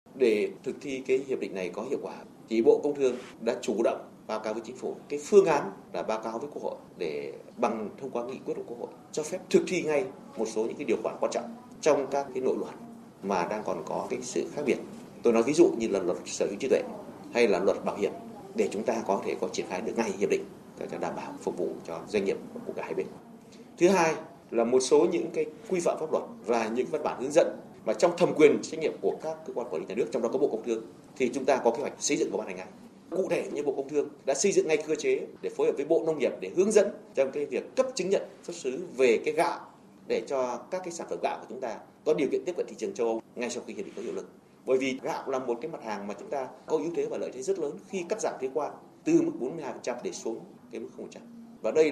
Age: 30-49